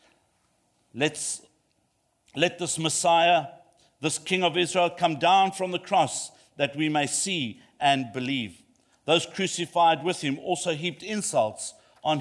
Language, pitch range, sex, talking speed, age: English, 160-195 Hz, male, 135 wpm, 50-69